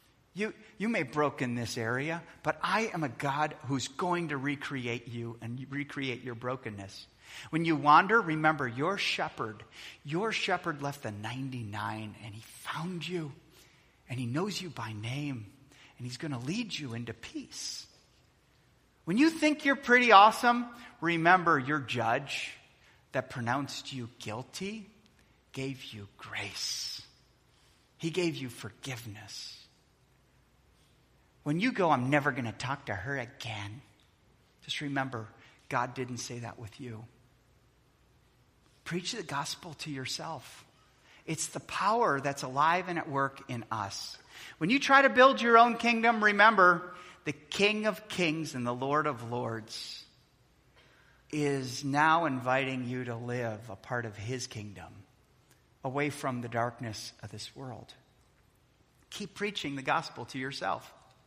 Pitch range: 120-165 Hz